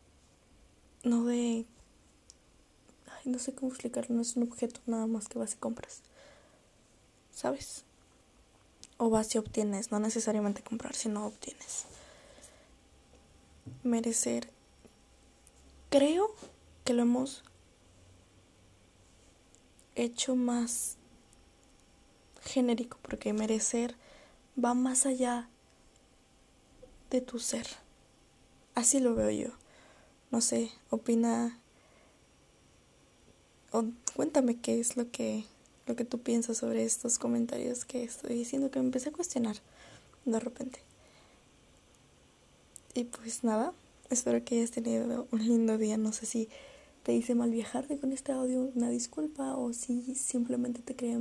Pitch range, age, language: 215-255 Hz, 20-39, Spanish